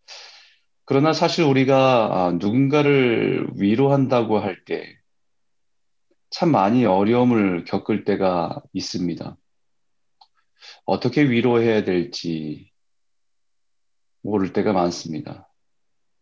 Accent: native